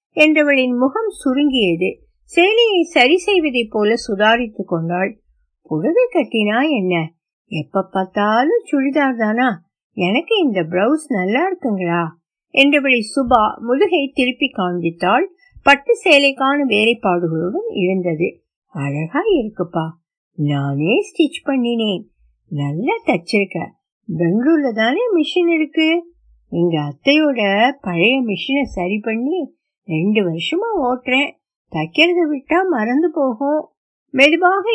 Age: 60-79